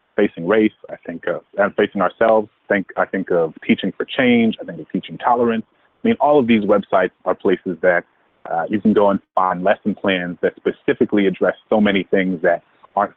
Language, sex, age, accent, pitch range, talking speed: English, male, 30-49, American, 95-115 Hz, 205 wpm